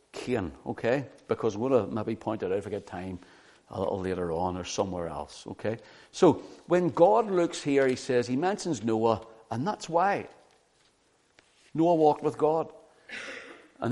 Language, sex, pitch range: English, male, 115-165 Hz